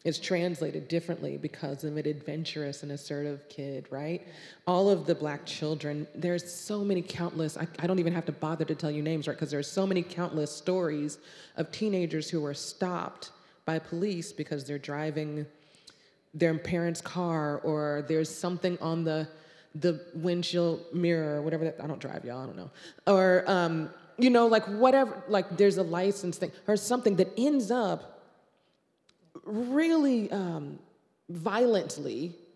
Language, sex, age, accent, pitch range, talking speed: English, female, 30-49, American, 150-185 Hz, 160 wpm